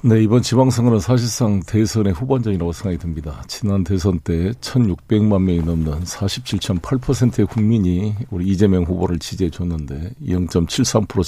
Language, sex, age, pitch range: Korean, male, 50-69, 90-115 Hz